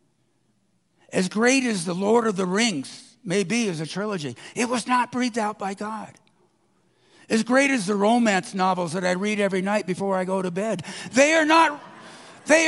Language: English